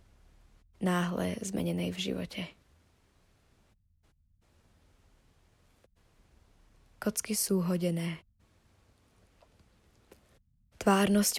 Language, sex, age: Slovak, female, 20-39